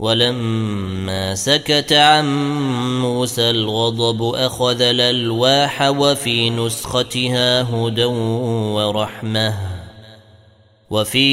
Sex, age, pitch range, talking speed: male, 20-39, 105-125 Hz, 65 wpm